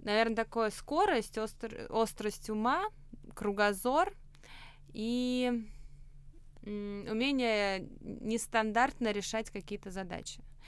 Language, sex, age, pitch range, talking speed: Russian, female, 20-39, 185-235 Hz, 75 wpm